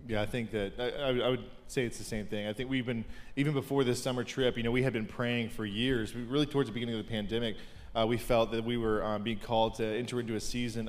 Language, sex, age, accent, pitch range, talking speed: English, male, 20-39, American, 110-135 Hz, 280 wpm